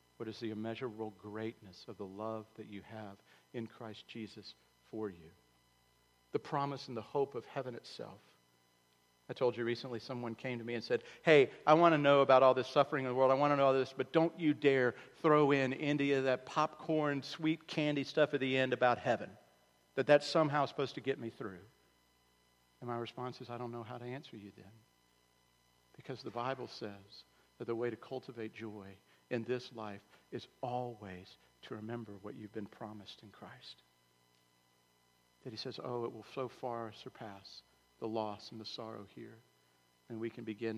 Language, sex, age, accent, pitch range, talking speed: English, male, 50-69, American, 100-125 Hz, 195 wpm